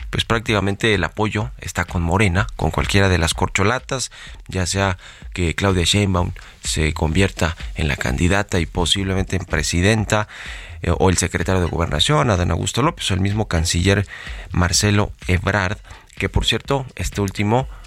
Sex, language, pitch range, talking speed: male, Spanish, 90-105 Hz, 150 wpm